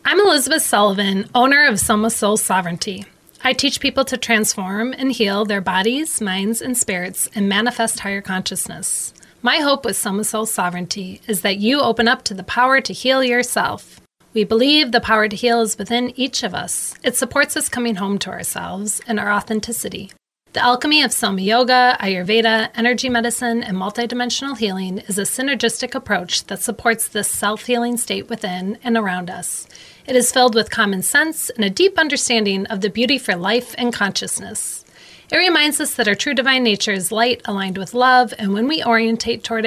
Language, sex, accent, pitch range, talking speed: English, female, American, 200-245 Hz, 185 wpm